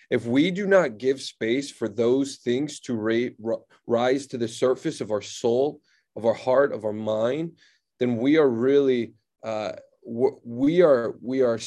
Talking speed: 160 wpm